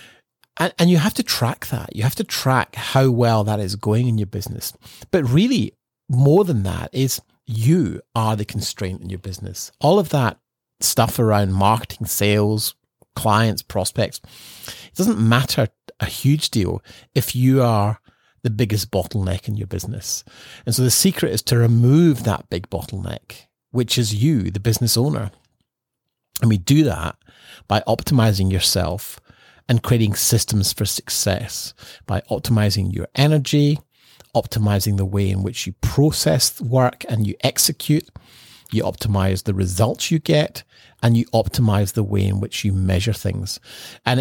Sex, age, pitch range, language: male, 40-59, 100-130 Hz, English